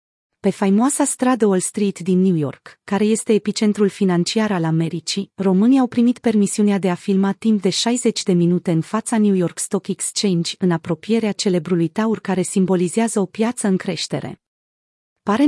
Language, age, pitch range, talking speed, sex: Romanian, 30-49, 180-220 Hz, 165 wpm, female